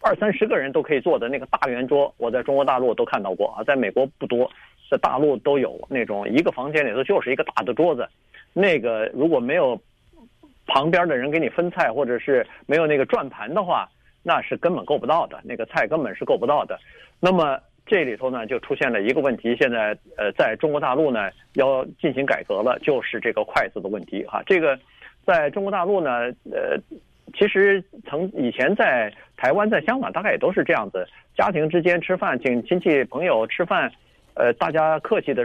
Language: Chinese